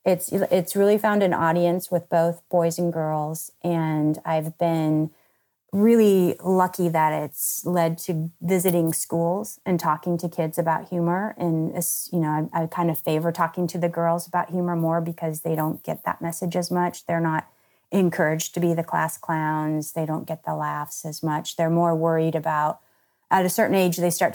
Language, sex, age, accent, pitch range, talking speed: English, female, 30-49, American, 160-180 Hz, 185 wpm